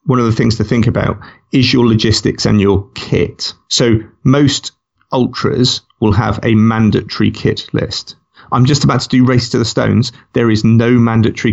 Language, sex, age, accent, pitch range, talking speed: English, male, 30-49, British, 110-130 Hz, 180 wpm